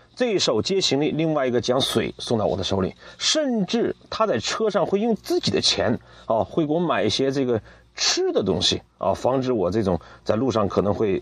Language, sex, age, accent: Chinese, male, 30-49, native